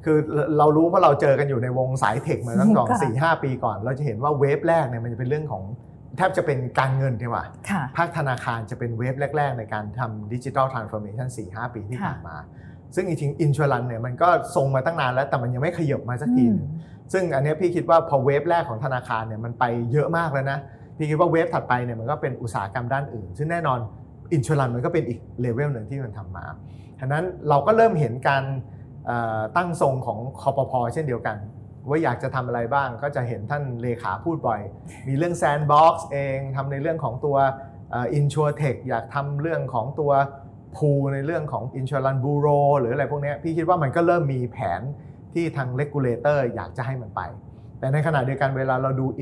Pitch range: 120-150 Hz